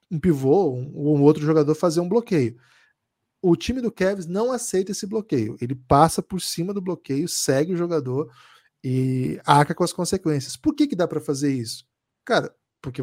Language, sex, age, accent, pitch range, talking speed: Portuguese, male, 20-39, Brazilian, 140-175 Hz, 190 wpm